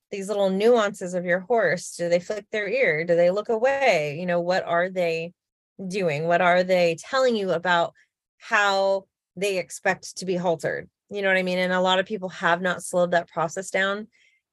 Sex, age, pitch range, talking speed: female, 20-39, 170-210 Hz, 200 wpm